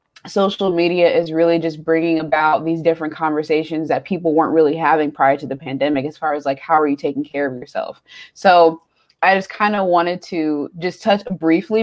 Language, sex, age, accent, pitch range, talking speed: English, female, 20-39, American, 150-175 Hz, 205 wpm